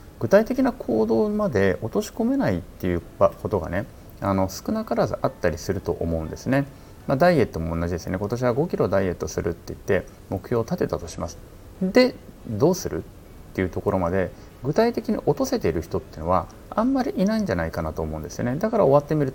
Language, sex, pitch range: Japanese, male, 90-145 Hz